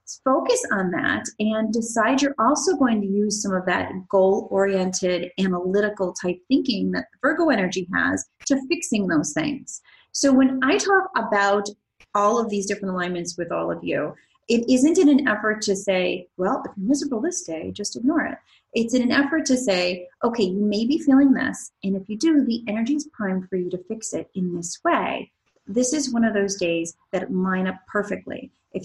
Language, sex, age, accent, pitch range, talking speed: English, female, 30-49, American, 185-260 Hz, 195 wpm